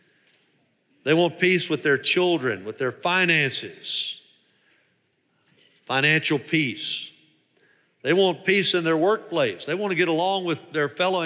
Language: English